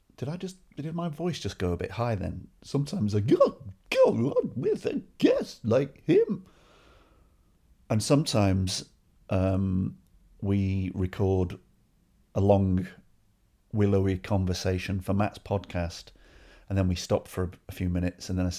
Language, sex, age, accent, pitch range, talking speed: English, male, 40-59, British, 90-105 Hz, 145 wpm